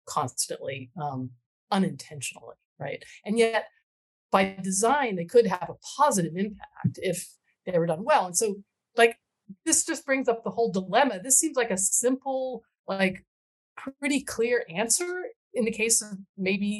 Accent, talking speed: American, 155 wpm